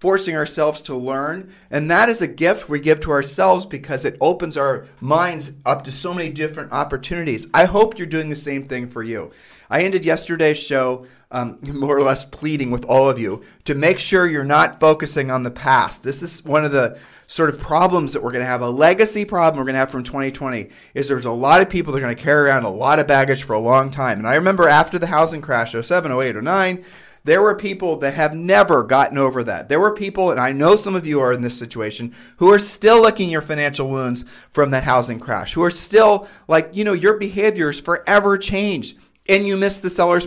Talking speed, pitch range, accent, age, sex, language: 230 wpm, 135-175 Hz, American, 40-59, male, English